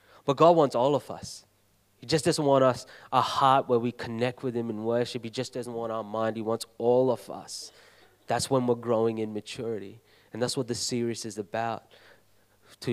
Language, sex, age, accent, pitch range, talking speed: English, male, 20-39, Australian, 110-135 Hz, 210 wpm